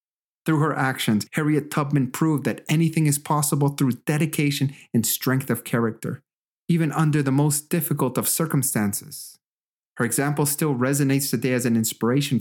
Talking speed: 150 wpm